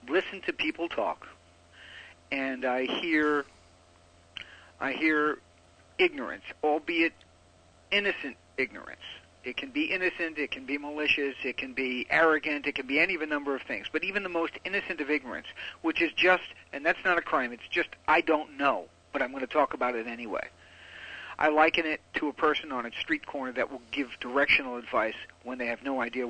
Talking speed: 185 wpm